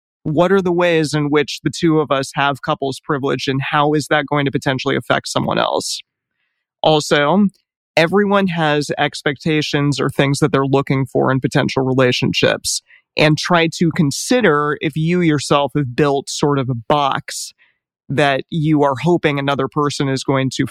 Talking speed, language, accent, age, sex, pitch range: 170 wpm, English, American, 20-39, male, 135-155 Hz